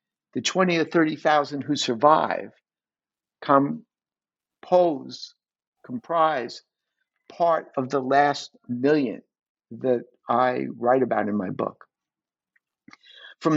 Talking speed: 95 wpm